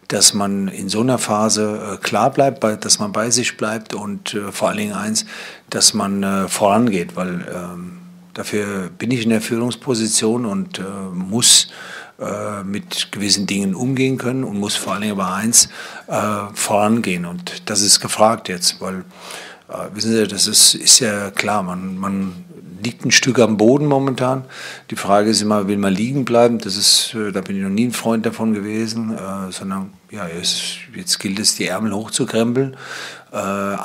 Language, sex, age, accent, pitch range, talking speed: German, male, 50-69, German, 100-125 Hz, 185 wpm